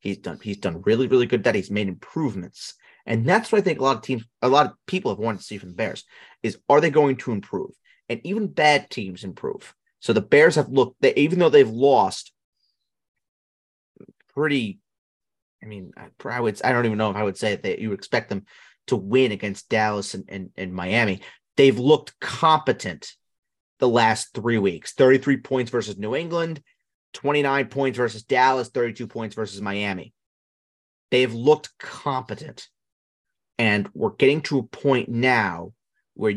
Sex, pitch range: male, 110-150 Hz